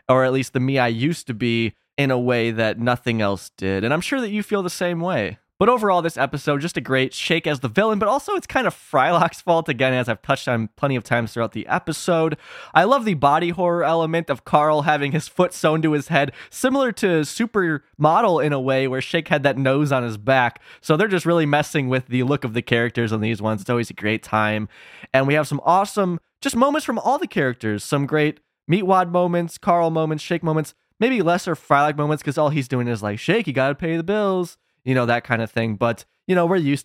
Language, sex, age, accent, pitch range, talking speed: English, male, 20-39, American, 125-165 Hz, 245 wpm